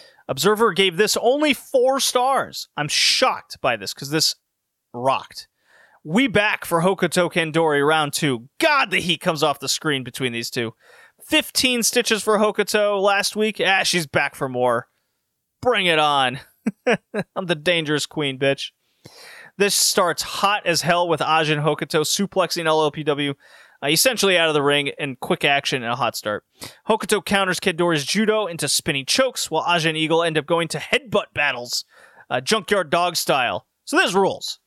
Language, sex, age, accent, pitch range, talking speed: English, male, 30-49, American, 150-210 Hz, 165 wpm